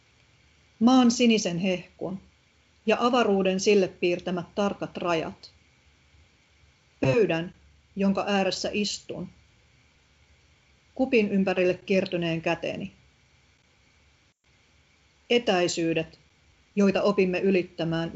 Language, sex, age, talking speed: Finnish, female, 40-59, 70 wpm